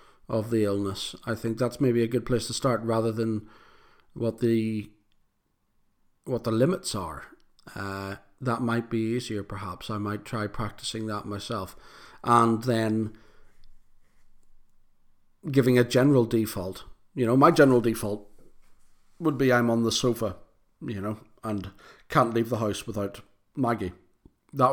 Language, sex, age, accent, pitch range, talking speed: English, male, 40-59, British, 105-120 Hz, 145 wpm